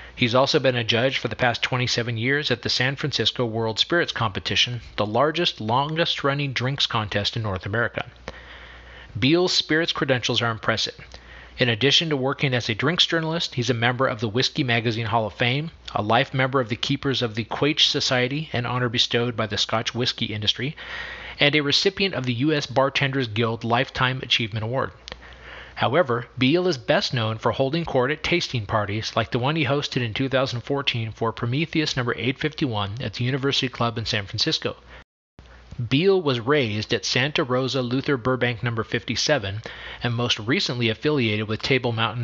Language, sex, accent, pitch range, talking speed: English, male, American, 115-140 Hz, 175 wpm